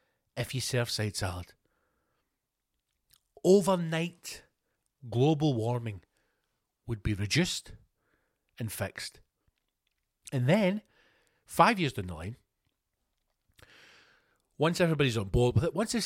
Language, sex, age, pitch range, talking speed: English, male, 40-59, 110-170 Hz, 105 wpm